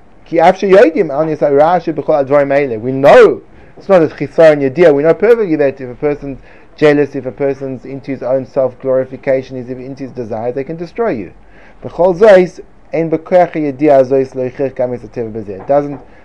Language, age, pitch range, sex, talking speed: English, 30-49, 135-165 Hz, male, 115 wpm